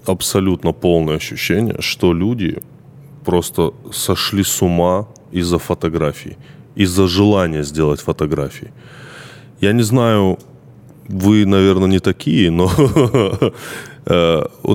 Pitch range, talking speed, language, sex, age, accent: 85-115 Hz, 100 wpm, Russian, male, 20-39, native